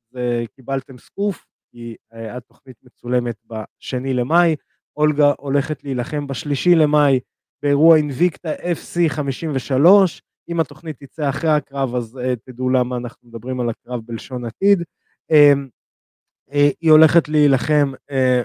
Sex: male